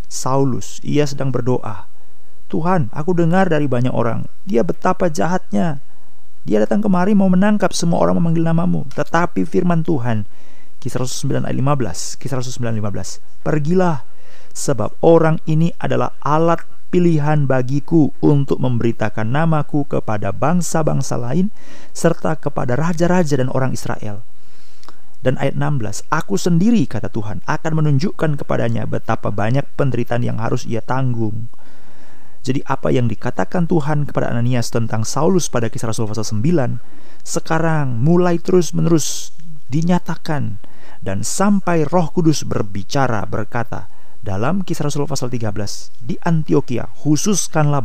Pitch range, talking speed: 120-170 Hz, 125 wpm